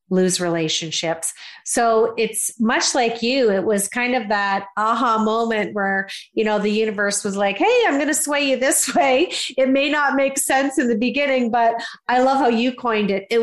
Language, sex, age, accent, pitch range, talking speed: English, female, 40-59, American, 180-230 Hz, 200 wpm